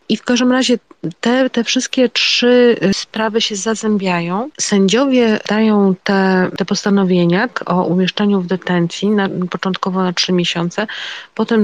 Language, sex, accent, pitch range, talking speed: Polish, female, native, 185-225 Hz, 135 wpm